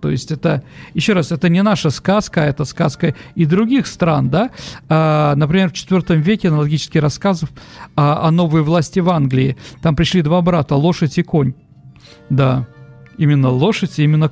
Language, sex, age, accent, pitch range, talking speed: Russian, male, 50-69, native, 145-185 Hz, 170 wpm